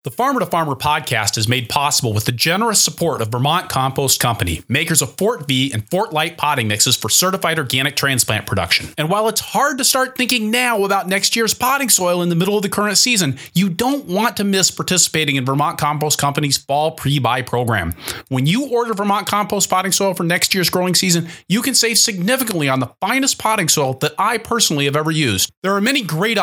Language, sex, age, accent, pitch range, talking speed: English, male, 30-49, American, 135-210 Hz, 215 wpm